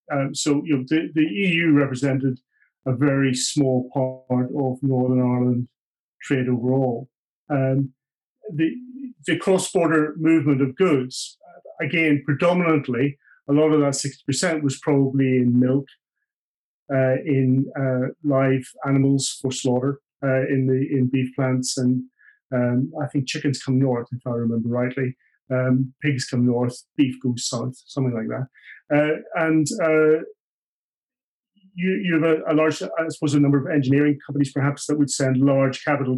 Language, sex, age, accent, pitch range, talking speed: English, male, 40-59, British, 130-145 Hz, 155 wpm